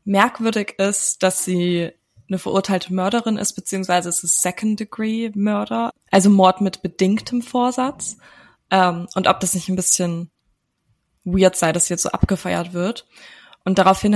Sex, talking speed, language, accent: female, 140 wpm, German, German